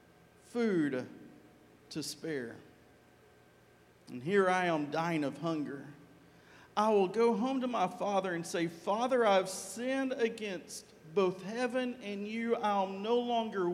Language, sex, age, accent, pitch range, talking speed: English, male, 50-69, American, 180-250 Hz, 140 wpm